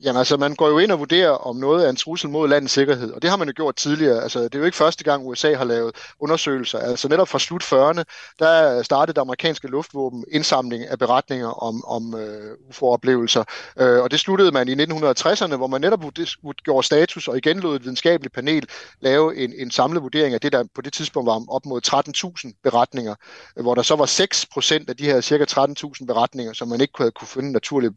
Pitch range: 130-160 Hz